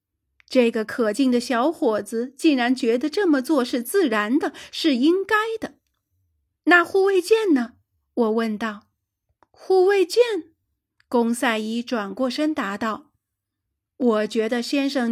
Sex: female